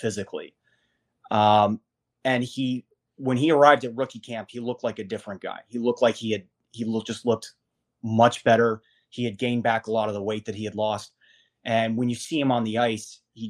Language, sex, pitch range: English, male, 105-120 Hz